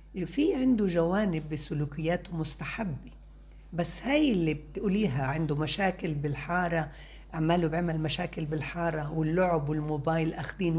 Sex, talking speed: female, 105 wpm